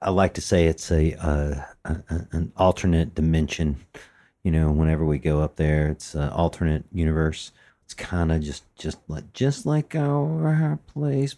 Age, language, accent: 40-59, English, American